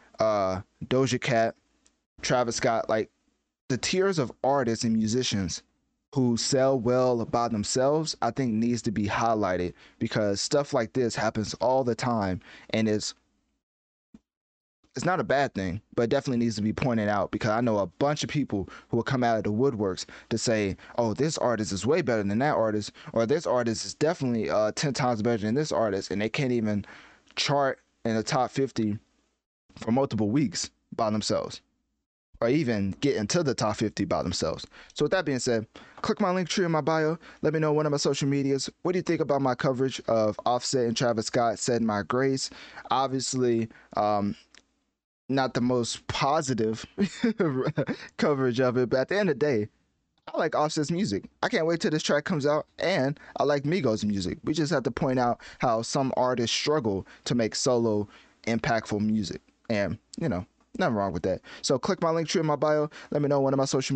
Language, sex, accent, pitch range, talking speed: English, male, American, 110-145 Hz, 200 wpm